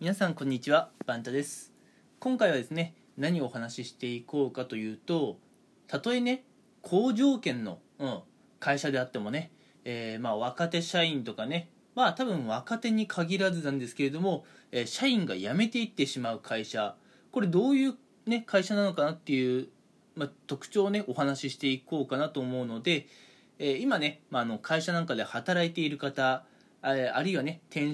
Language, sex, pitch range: Japanese, male, 135-200 Hz